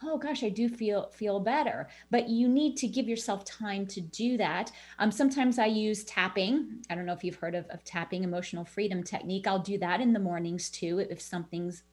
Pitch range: 190-260 Hz